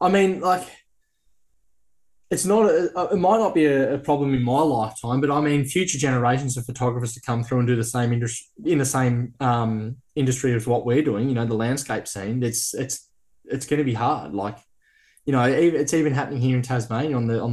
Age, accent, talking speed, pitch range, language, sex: 20-39, Australian, 225 wpm, 115-140 Hz, English, male